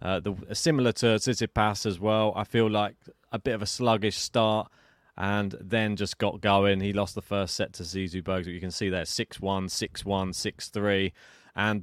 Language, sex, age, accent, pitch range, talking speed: English, male, 30-49, British, 115-170 Hz, 195 wpm